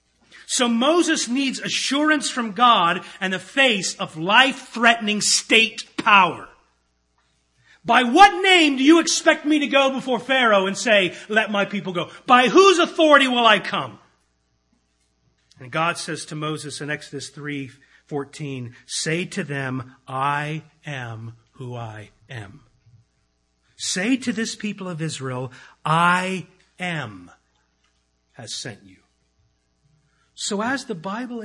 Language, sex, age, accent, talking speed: English, male, 40-59, American, 130 wpm